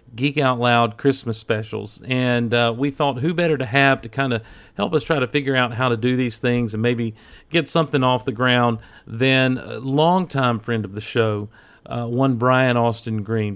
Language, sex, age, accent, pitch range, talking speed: English, male, 40-59, American, 115-135 Hz, 205 wpm